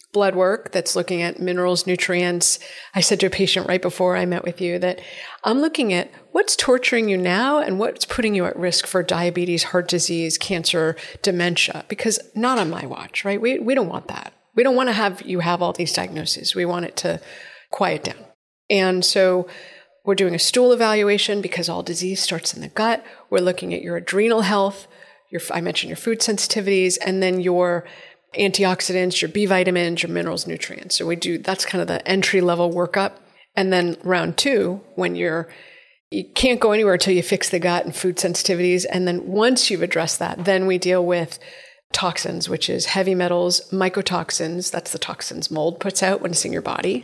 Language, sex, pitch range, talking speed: English, female, 175-200 Hz, 200 wpm